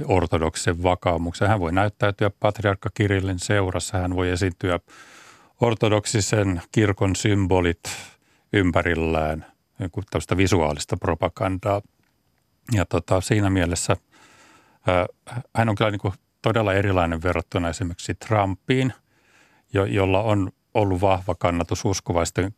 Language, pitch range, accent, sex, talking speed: Finnish, 90-110 Hz, native, male, 105 wpm